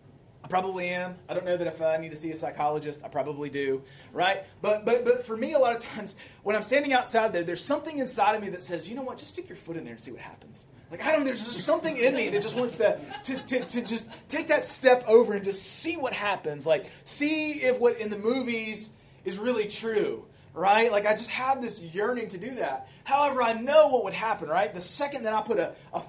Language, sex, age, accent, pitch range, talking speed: English, male, 30-49, American, 160-240 Hz, 255 wpm